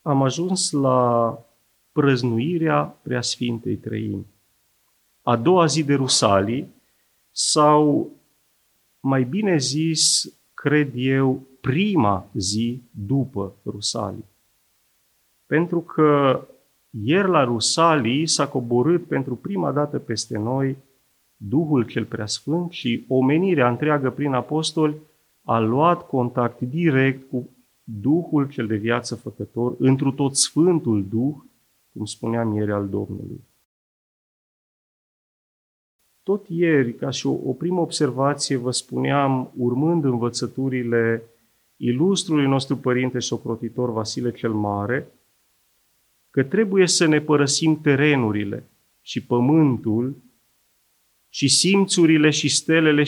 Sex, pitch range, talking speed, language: male, 115-150 Hz, 105 wpm, Romanian